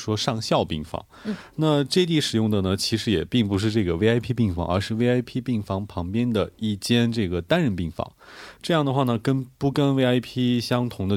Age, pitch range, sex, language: 30-49, 95-130 Hz, male, Korean